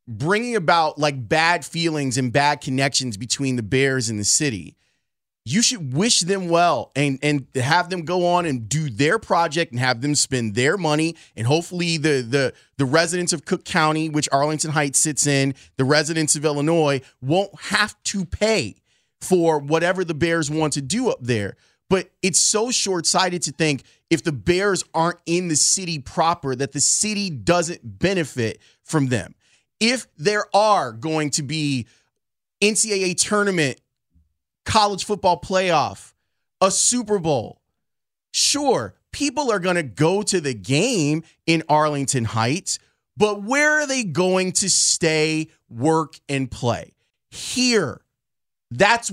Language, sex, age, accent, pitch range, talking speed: English, male, 30-49, American, 145-195 Hz, 150 wpm